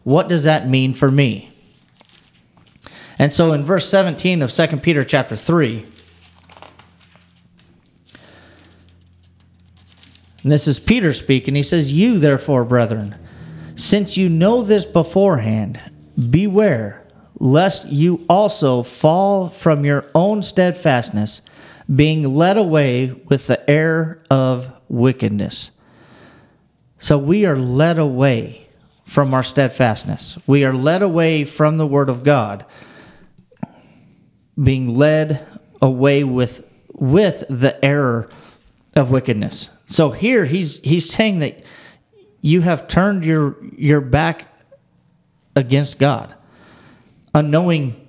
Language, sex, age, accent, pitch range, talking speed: English, male, 40-59, American, 125-160 Hz, 110 wpm